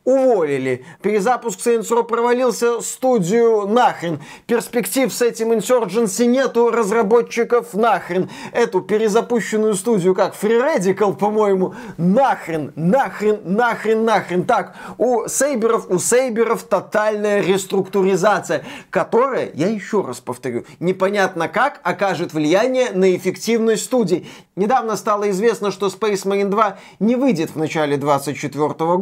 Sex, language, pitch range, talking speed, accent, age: male, Russian, 180-225 Hz, 115 wpm, native, 20-39